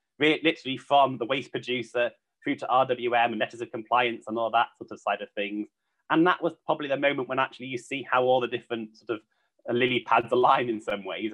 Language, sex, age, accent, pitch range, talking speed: English, male, 20-39, British, 110-125 Hz, 220 wpm